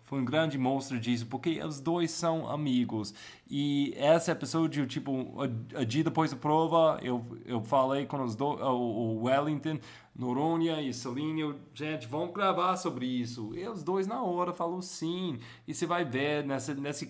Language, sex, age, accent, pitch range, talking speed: Portuguese, male, 20-39, Brazilian, 115-160 Hz, 170 wpm